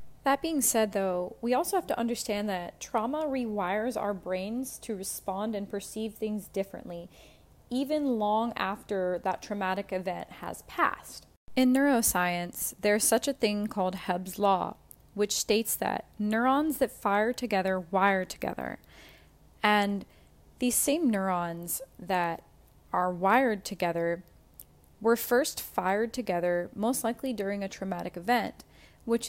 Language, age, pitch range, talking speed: English, 20-39, 190-235 Hz, 135 wpm